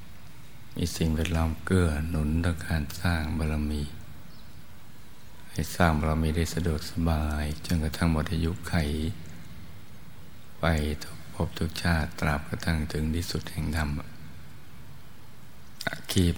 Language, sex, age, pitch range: Thai, male, 60-79, 80-85 Hz